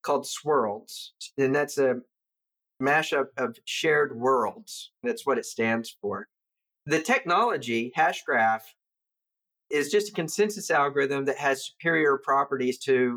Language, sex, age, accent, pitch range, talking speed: English, male, 50-69, American, 125-160 Hz, 125 wpm